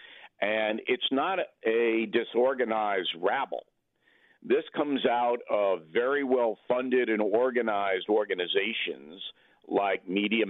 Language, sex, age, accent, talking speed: English, male, 50-69, American, 95 wpm